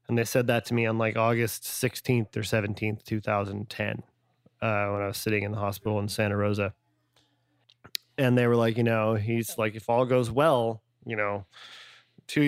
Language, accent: English, American